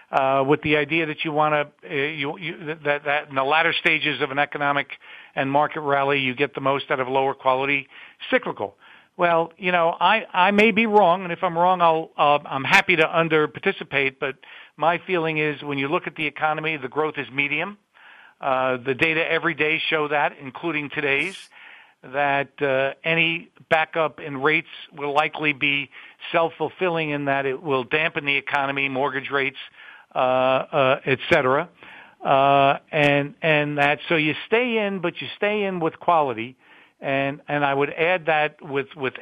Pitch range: 135-165 Hz